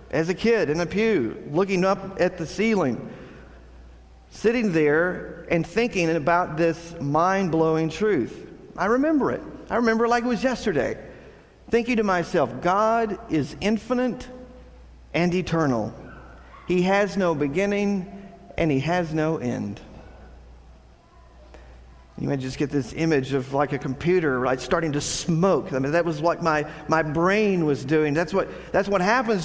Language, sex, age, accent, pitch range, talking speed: English, male, 50-69, American, 140-190 Hz, 155 wpm